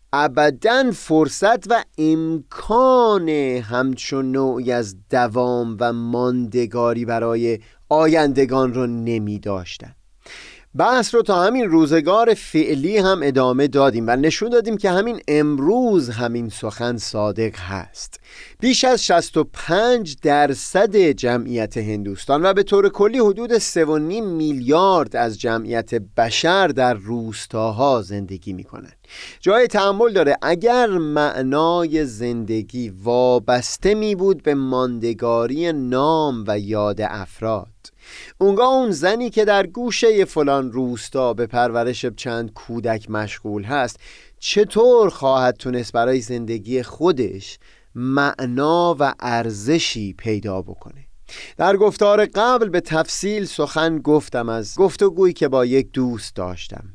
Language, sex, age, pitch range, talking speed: Persian, male, 30-49, 115-170 Hz, 115 wpm